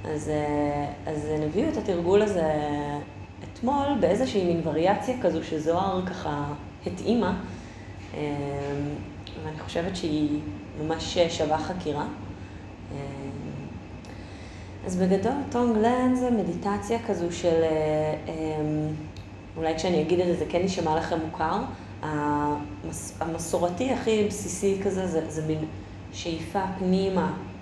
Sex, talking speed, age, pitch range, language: female, 80 wpm, 20-39, 140-175 Hz, Hebrew